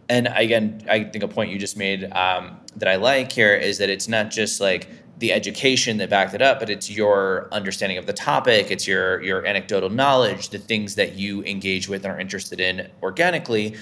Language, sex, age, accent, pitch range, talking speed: English, male, 20-39, American, 95-115 Hz, 215 wpm